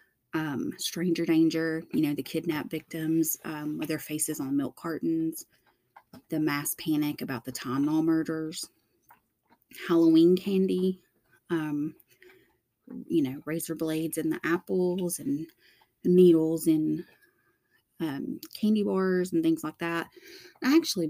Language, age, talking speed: English, 30-49, 130 wpm